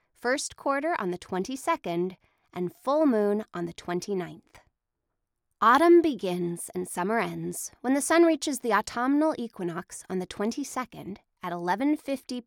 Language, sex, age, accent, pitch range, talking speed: English, female, 20-39, American, 180-265 Hz, 135 wpm